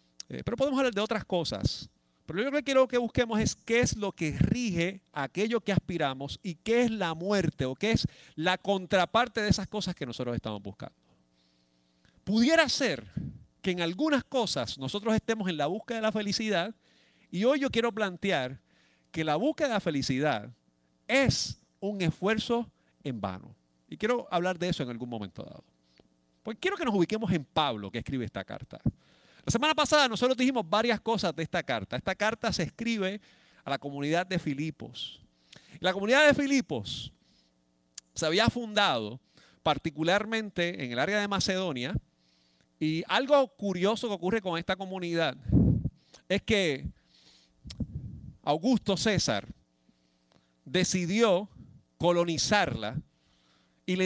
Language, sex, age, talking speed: Spanish, male, 40-59, 155 wpm